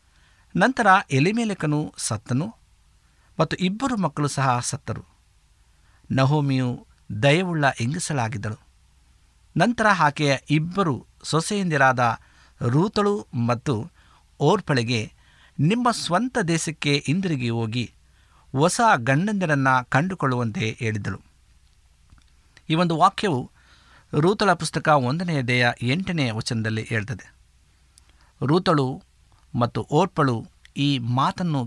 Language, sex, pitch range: Kannada, male, 105-160 Hz